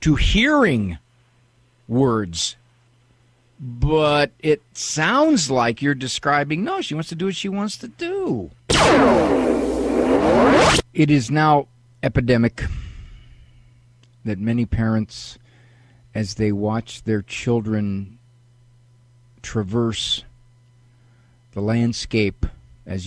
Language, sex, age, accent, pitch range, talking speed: English, male, 50-69, American, 105-120 Hz, 90 wpm